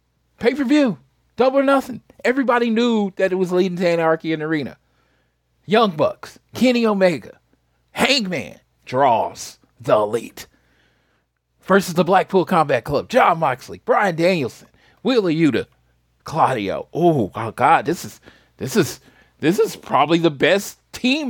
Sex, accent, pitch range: male, American, 120-200 Hz